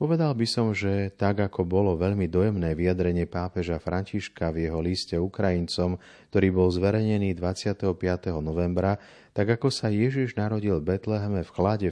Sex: male